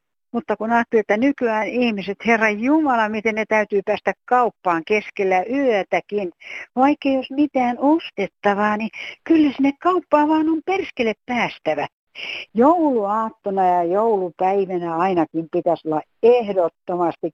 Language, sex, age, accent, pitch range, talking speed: Finnish, female, 60-79, native, 170-235 Hz, 120 wpm